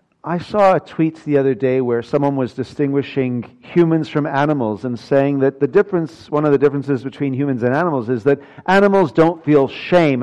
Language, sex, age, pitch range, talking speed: English, male, 50-69, 120-160 Hz, 195 wpm